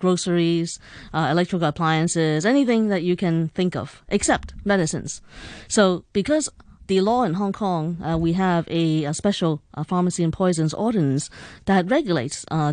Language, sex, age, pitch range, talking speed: English, female, 20-39, 160-195 Hz, 155 wpm